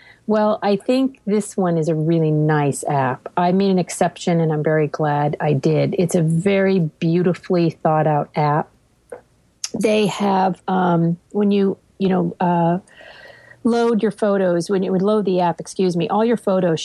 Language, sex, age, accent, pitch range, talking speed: English, female, 40-59, American, 155-190 Hz, 175 wpm